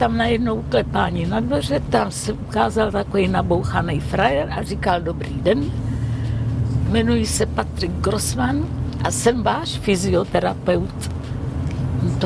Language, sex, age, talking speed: Czech, female, 50-69, 120 wpm